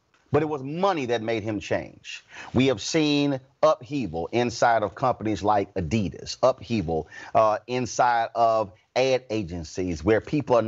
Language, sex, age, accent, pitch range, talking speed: English, male, 30-49, American, 115-150 Hz, 145 wpm